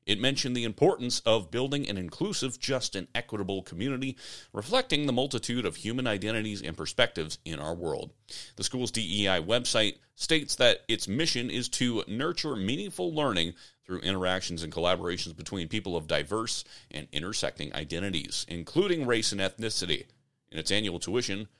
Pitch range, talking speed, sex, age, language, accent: 95-135 Hz, 155 wpm, male, 30-49, English, American